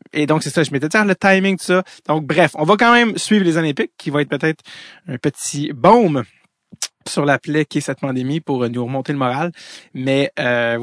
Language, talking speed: French, 225 wpm